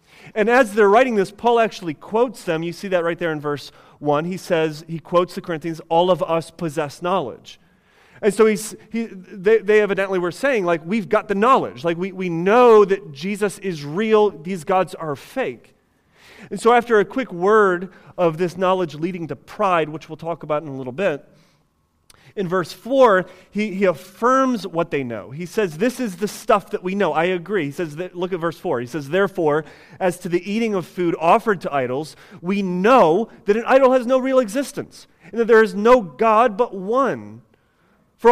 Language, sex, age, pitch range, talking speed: English, male, 30-49, 165-215 Hz, 200 wpm